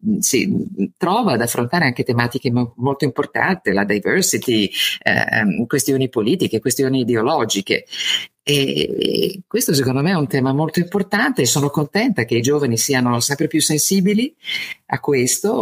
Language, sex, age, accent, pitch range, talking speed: Italian, female, 50-69, native, 120-195 Hz, 145 wpm